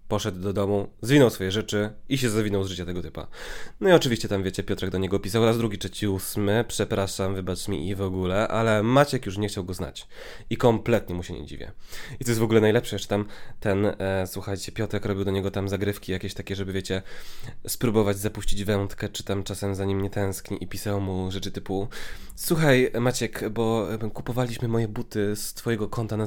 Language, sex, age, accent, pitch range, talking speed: Polish, male, 20-39, native, 95-120 Hz, 210 wpm